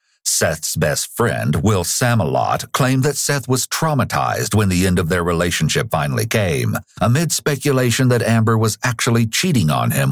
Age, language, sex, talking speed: 60-79, English, male, 160 wpm